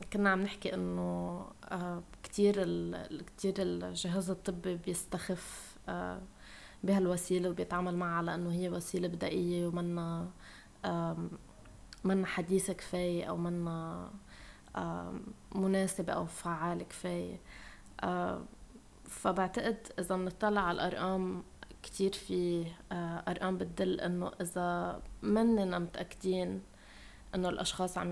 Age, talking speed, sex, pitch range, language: 20-39, 90 wpm, female, 170-195 Hz, Arabic